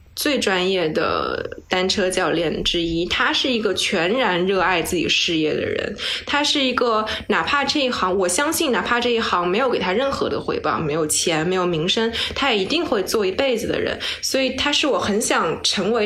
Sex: female